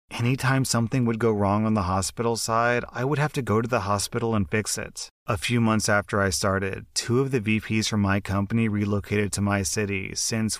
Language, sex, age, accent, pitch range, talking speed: English, male, 30-49, American, 105-115 Hz, 215 wpm